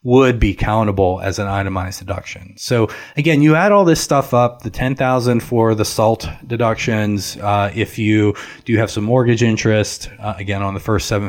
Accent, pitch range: American, 100-120 Hz